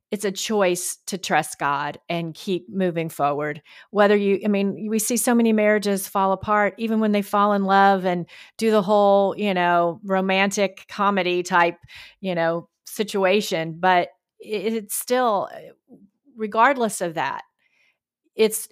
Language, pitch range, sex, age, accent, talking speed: English, 170-205 Hz, female, 40-59, American, 145 wpm